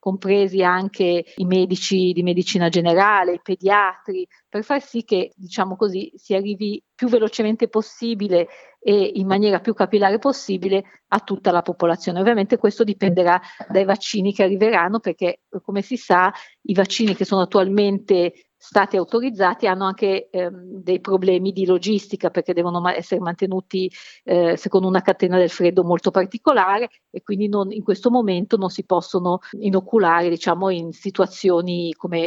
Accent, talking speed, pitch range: native, 145 wpm, 180-205 Hz